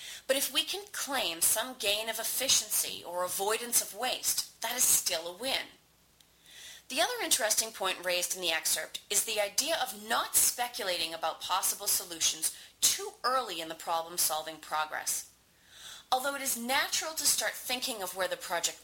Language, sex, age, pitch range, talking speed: English, female, 30-49, 170-255 Hz, 165 wpm